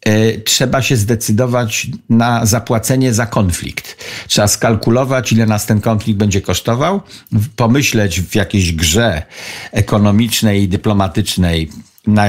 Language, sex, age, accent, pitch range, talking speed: Polish, male, 50-69, native, 105-125 Hz, 110 wpm